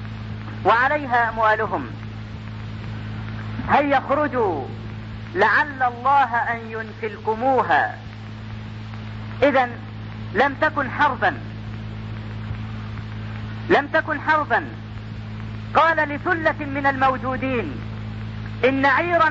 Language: Arabic